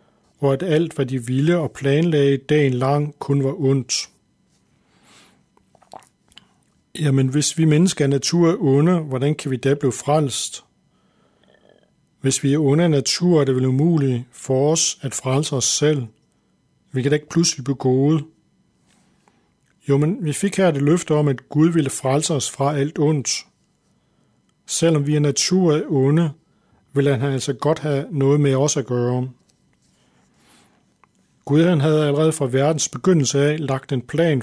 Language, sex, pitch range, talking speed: Danish, male, 135-155 Hz, 160 wpm